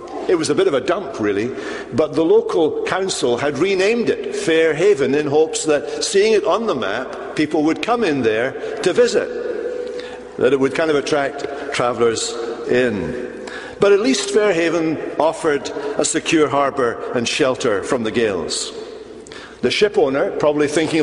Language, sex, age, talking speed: English, male, 60-79, 160 wpm